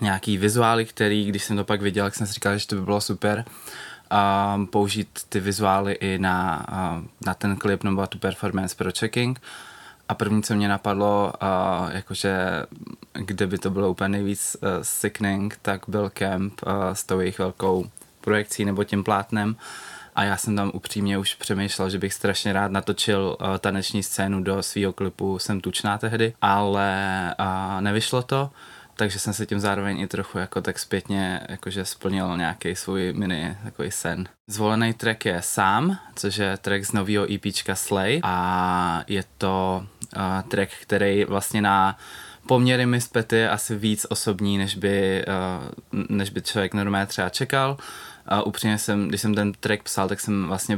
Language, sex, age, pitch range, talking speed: Czech, male, 20-39, 95-105 Hz, 170 wpm